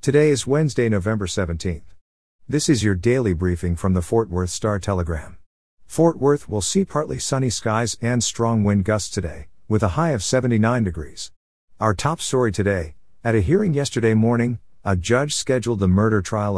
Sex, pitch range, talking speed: male, 90-120 Hz, 175 wpm